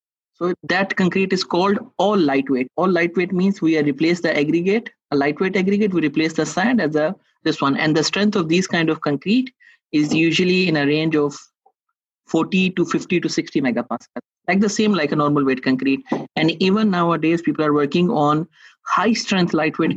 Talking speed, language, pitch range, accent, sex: 190 wpm, English, 140-175 Hz, Indian, male